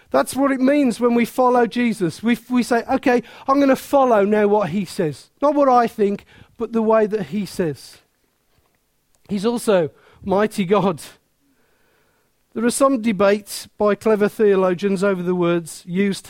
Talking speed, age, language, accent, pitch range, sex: 165 wpm, 50-69, English, British, 180-235 Hz, male